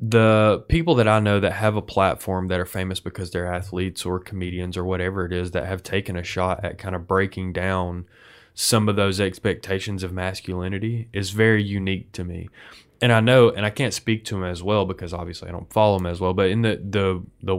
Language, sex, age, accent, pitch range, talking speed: English, male, 20-39, American, 95-110 Hz, 225 wpm